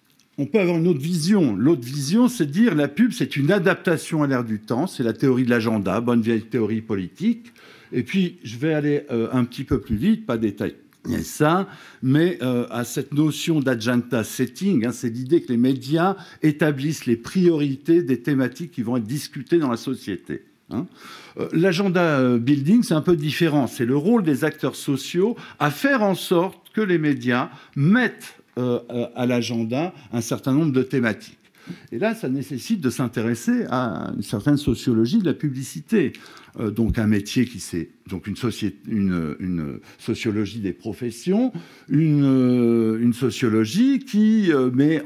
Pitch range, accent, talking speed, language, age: 120-175 Hz, French, 170 wpm, French, 60-79